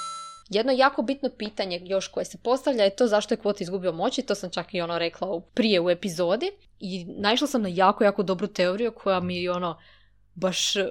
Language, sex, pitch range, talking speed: Croatian, female, 190-220 Hz, 210 wpm